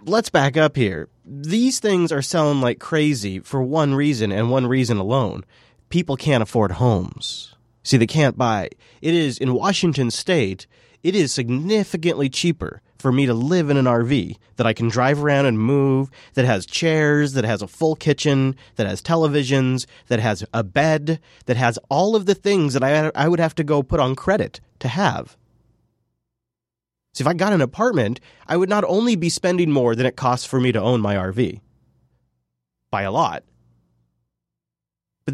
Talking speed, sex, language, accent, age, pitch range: 180 wpm, male, English, American, 30-49, 115-155 Hz